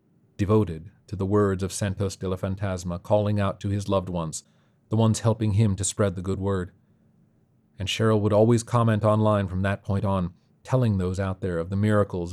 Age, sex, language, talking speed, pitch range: 40-59, male, English, 200 wpm, 95-115 Hz